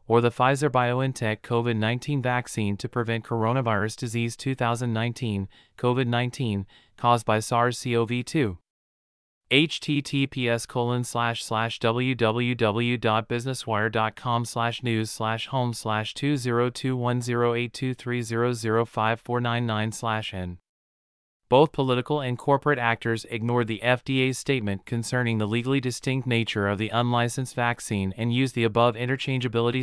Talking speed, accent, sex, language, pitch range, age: 125 wpm, American, male, English, 110-125 Hz, 30-49